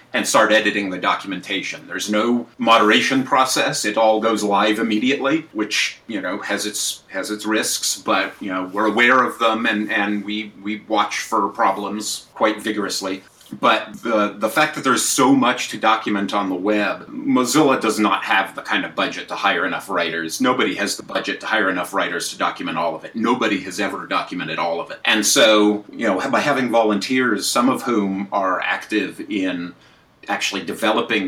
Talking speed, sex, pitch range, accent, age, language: 190 wpm, male, 100-115 Hz, American, 40-59, English